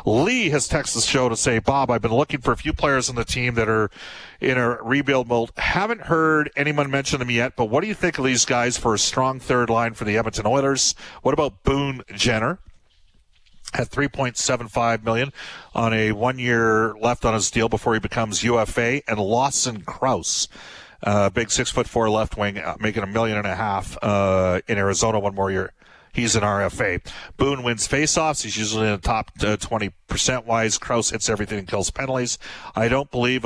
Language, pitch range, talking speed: English, 105-130 Hz, 200 wpm